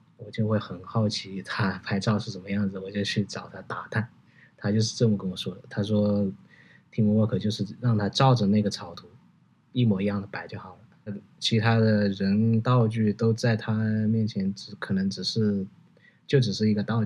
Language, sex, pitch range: Chinese, male, 100-115 Hz